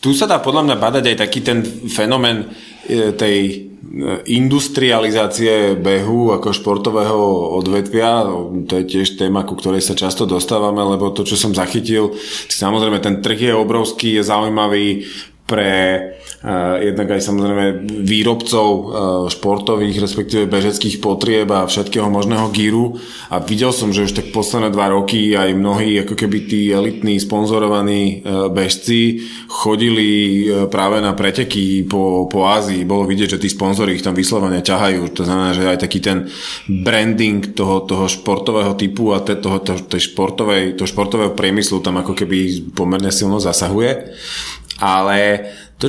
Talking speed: 145 wpm